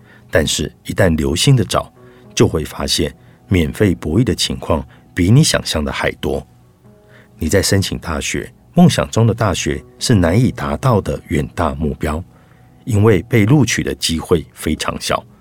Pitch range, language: 80-115 Hz, Chinese